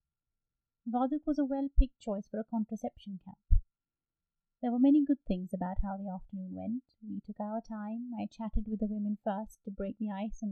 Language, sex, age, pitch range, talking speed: English, female, 30-49, 195-225 Hz, 195 wpm